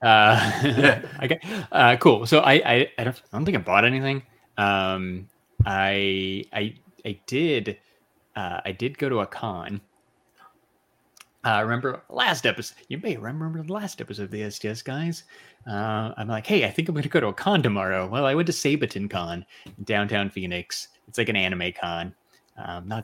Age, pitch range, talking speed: 30-49, 95-130 Hz, 180 wpm